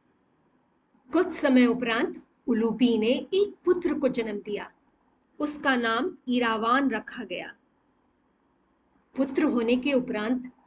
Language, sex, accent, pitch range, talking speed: Hindi, female, native, 230-300 Hz, 105 wpm